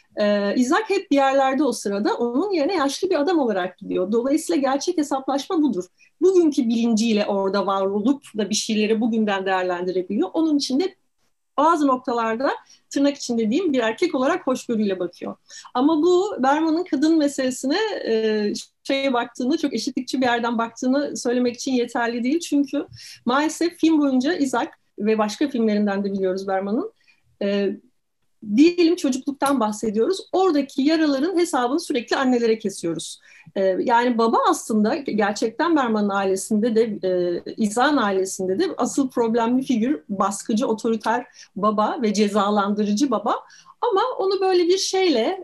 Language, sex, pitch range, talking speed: Turkish, female, 225-305 Hz, 135 wpm